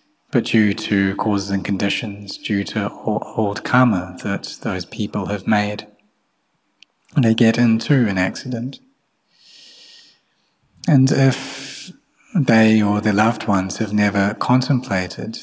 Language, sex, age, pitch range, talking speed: English, male, 30-49, 100-125 Hz, 115 wpm